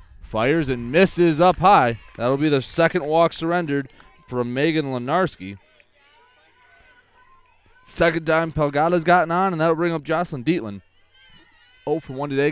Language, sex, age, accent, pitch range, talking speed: English, male, 30-49, American, 120-180 Hz, 135 wpm